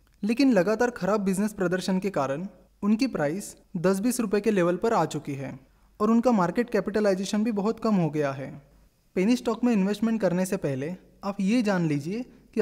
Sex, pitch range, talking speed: male, 170-225 Hz, 185 wpm